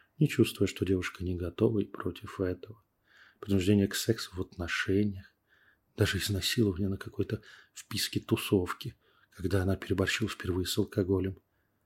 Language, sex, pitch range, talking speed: Russian, male, 95-110 Hz, 130 wpm